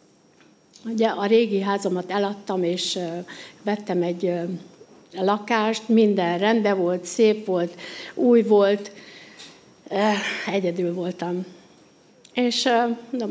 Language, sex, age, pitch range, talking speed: Hungarian, female, 60-79, 180-215 Hz, 90 wpm